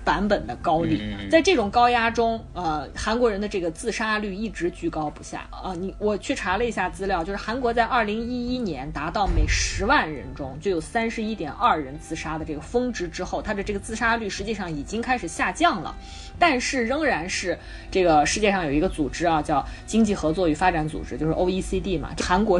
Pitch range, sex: 170-235 Hz, female